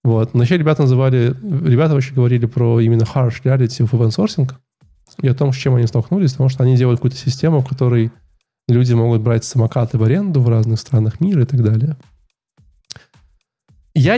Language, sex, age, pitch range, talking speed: Russian, male, 20-39, 120-140 Hz, 175 wpm